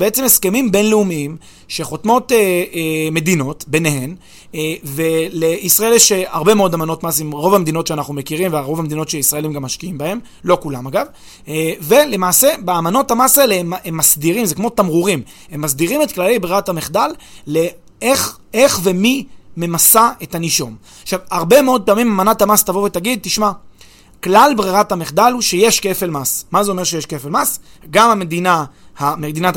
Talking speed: 150 wpm